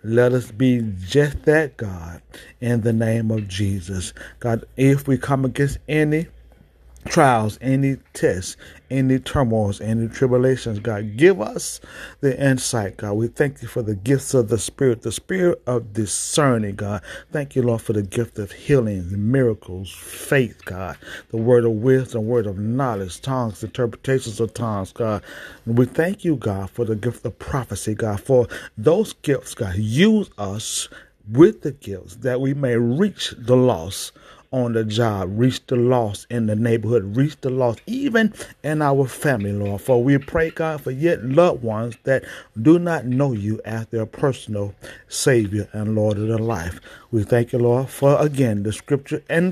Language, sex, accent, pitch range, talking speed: English, male, American, 105-135 Hz, 170 wpm